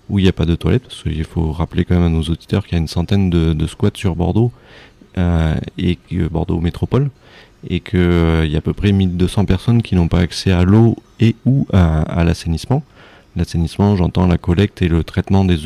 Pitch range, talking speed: 80-95 Hz, 225 wpm